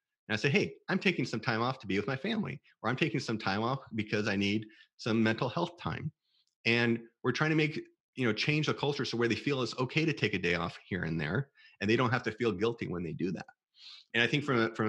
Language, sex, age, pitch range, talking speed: English, male, 30-49, 110-145 Hz, 265 wpm